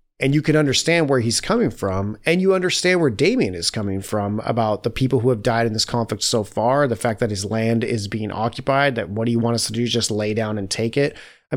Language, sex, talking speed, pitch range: English, male, 260 wpm, 110-140 Hz